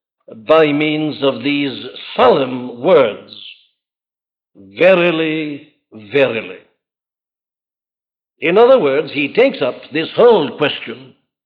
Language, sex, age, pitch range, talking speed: English, male, 60-79, 140-175 Hz, 90 wpm